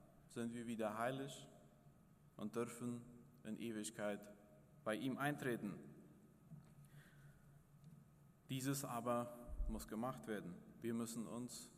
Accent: Austrian